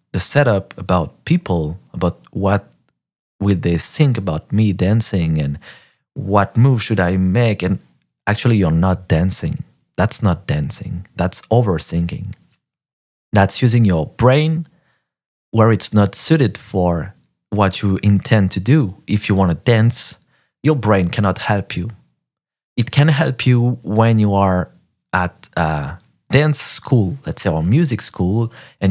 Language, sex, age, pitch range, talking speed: English, male, 30-49, 90-120 Hz, 140 wpm